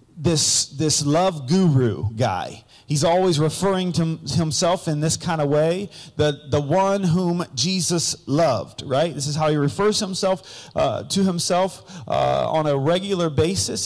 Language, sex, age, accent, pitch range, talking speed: English, male, 40-59, American, 155-205 Hz, 155 wpm